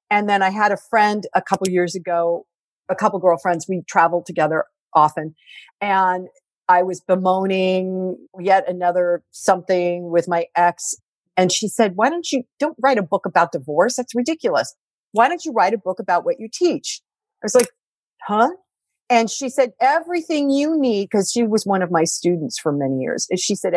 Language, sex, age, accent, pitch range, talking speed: English, female, 50-69, American, 175-245 Hz, 190 wpm